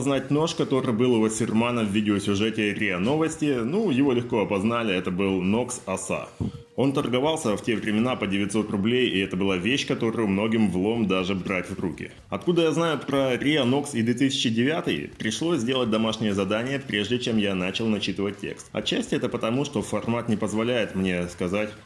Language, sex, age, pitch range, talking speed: Russian, male, 20-39, 95-125 Hz, 170 wpm